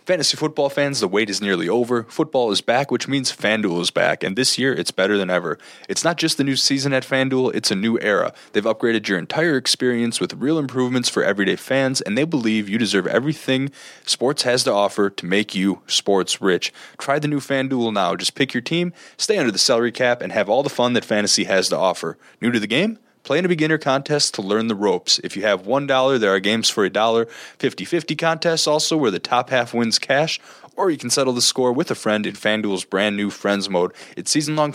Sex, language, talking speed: male, English, 230 wpm